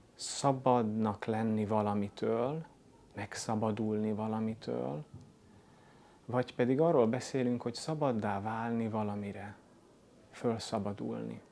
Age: 30-49